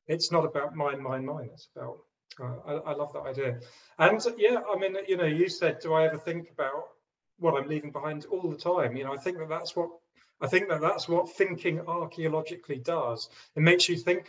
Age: 40-59